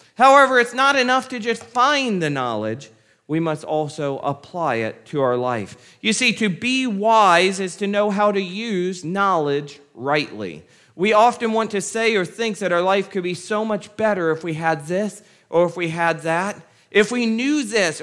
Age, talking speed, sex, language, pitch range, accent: 40-59, 195 wpm, male, English, 180-235 Hz, American